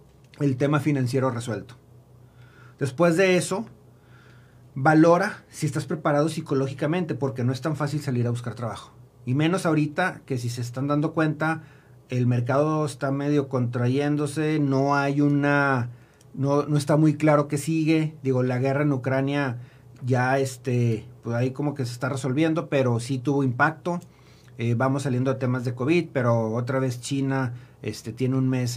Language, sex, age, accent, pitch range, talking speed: Spanish, male, 40-59, Mexican, 125-155 Hz, 165 wpm